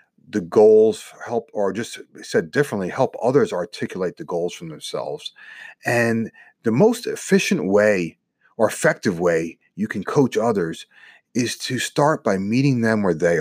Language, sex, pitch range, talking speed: English, male, 110-160 Hz, 150 wpm